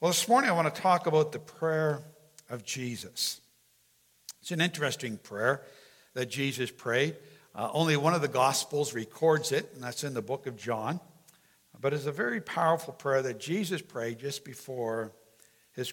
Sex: male